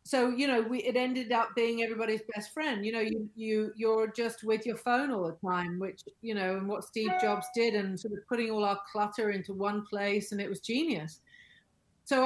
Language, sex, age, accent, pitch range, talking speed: English, female, 40-59, British, 190-230 Hz, 225 wpm